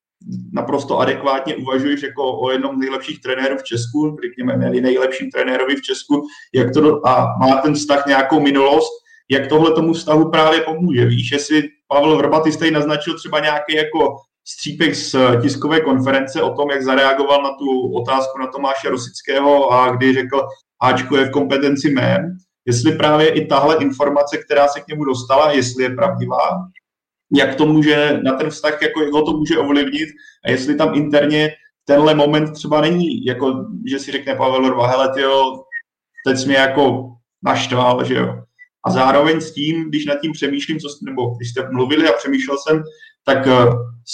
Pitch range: 130-155 Hz